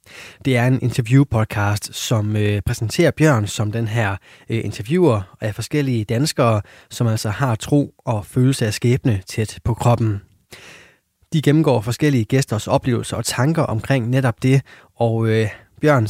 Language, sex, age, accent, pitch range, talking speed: Danish, male, 20-39, native, 110-135 Hz, 140 wpm